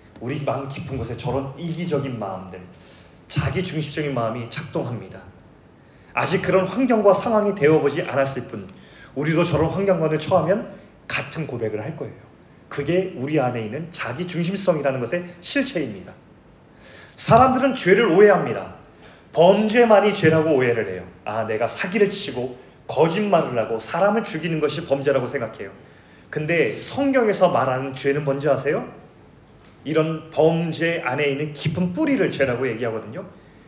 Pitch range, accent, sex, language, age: 145-210 Hz, native, male, Korean, 30-49